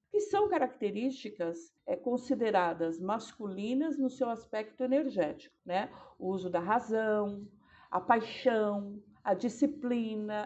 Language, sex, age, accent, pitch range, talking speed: Portuguese, female, 50-69, Brazilian, 200-270 Hz, 105 wpm